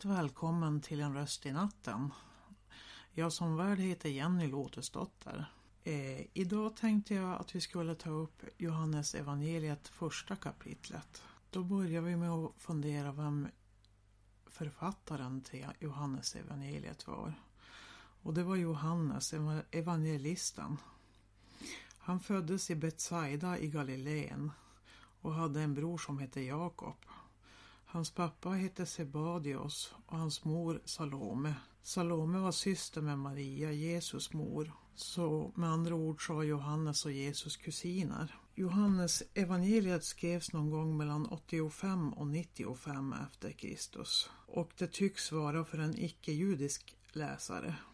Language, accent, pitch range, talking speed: Swedish, native, 145-175 Hz, 125 wpm